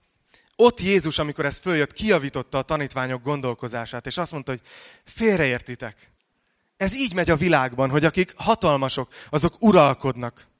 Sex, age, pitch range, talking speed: male, 20-39, 120-150 Hz, 135 wpm